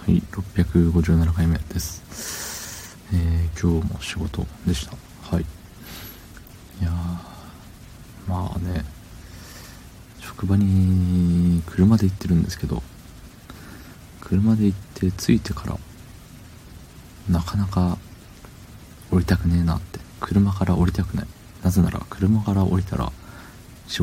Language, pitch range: Japanese, 85-100 Hz